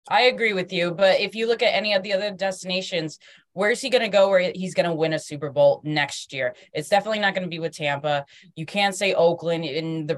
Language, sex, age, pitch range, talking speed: English, female, 20-39, 145-175 Hz, 260 wpm